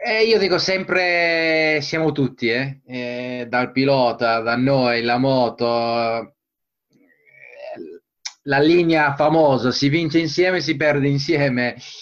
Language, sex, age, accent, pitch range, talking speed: Italian, male, 30-49, native, 135-170 Hz, 110 wpm